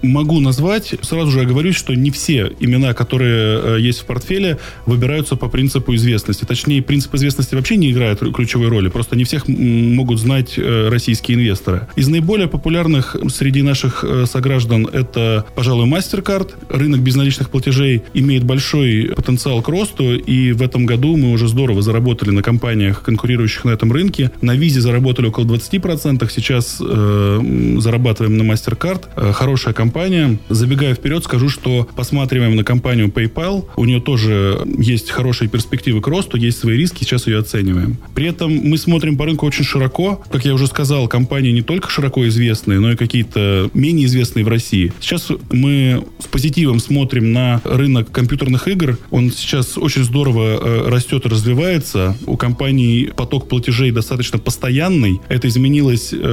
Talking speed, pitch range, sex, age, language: 160 wpm, 115-140 Hz, male, 20-39, Russian